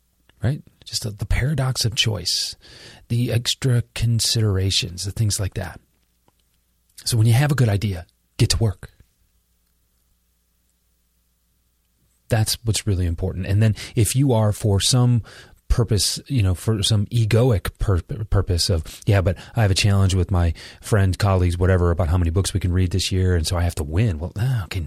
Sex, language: male, English